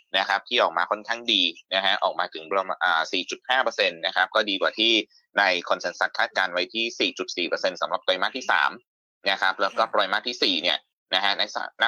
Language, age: Thai, 20-39